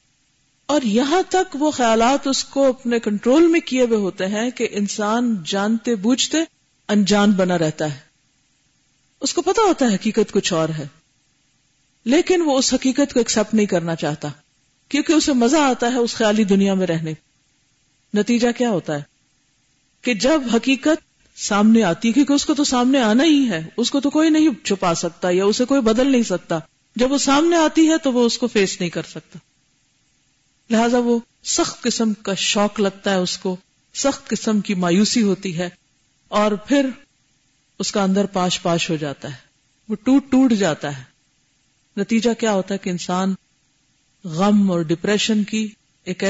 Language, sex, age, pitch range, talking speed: Urdu, female, 50-69, 155-240 Hz, 175 wpm